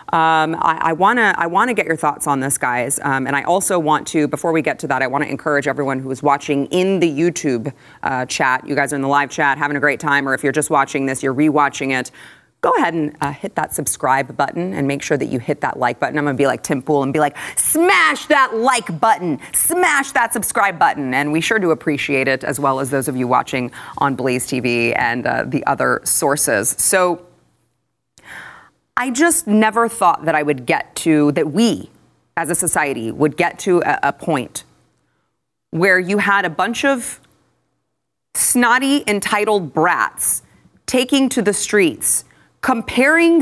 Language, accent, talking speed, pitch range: English, American, 205 wpm, 140-235 Hz